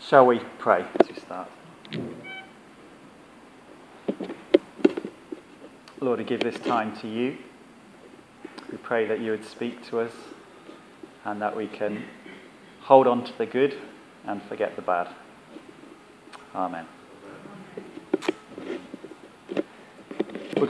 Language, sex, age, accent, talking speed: English, male, 30-49, British, 105 wpm